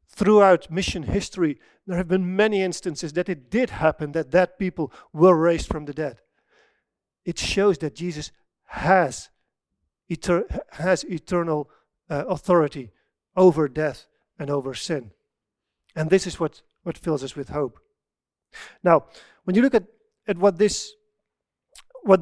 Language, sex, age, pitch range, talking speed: English, male, 40-59, 170-230 Hz, 145 wpm